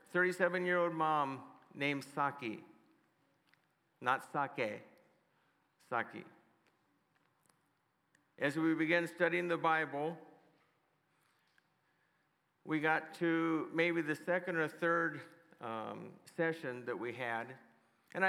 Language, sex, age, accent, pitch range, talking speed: English, male, 50-69, American, 145-175 Hz, 90 wpm